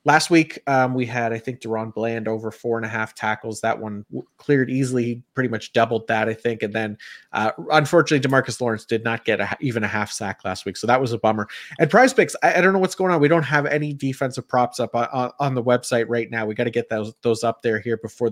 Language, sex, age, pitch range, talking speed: English, male, 30-49, 110-130 Hz, 265 wpm